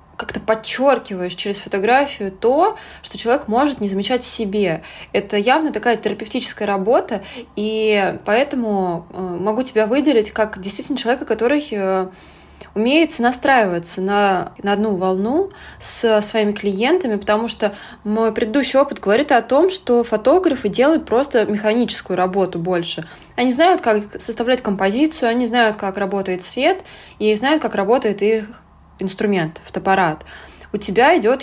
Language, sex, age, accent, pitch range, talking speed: Russian, female, 20-39, native, 195-240 Hz, 135 wpm